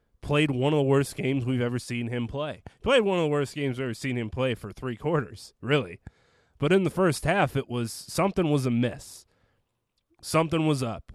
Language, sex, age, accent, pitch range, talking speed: English, male, 30-49, American, 110-145 Hz, 210 wpm